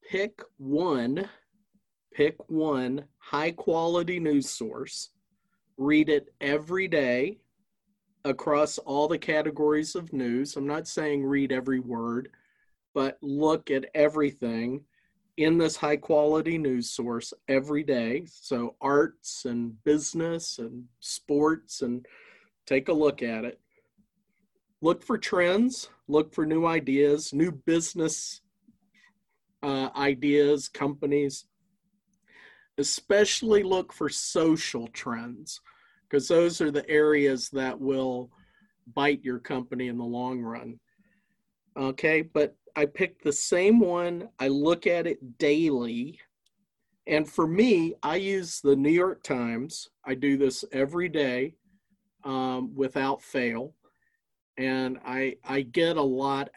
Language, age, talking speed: English, 40-59, 120 wpm